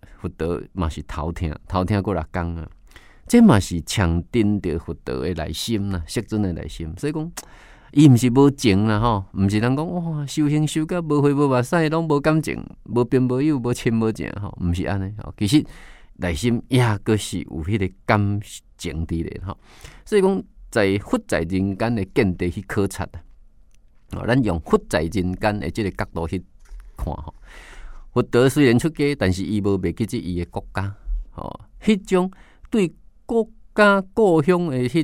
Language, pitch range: Chinese, 95-135 Hz